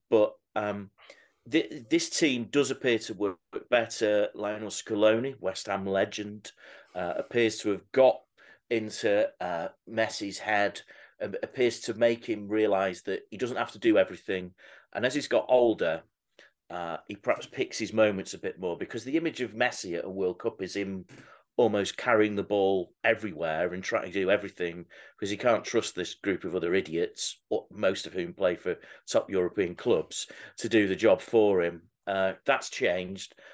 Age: 40-59